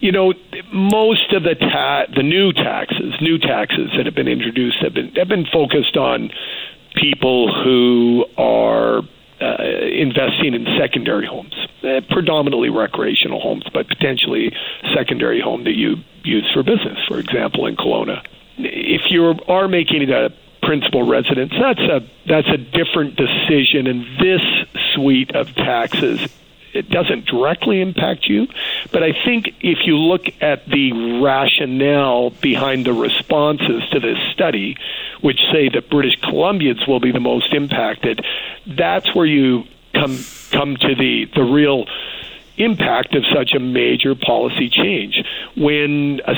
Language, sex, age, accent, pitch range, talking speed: English, male, 50-69, American, 130-165 Hz, 145 wpm